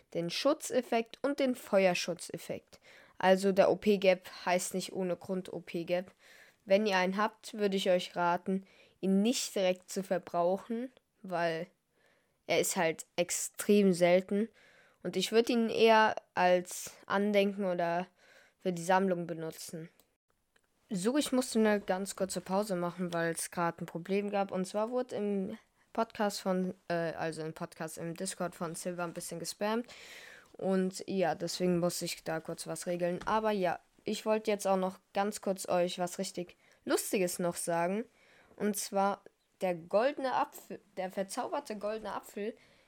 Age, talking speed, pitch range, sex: 20-39, 150 wpm, 175-215 Hz, female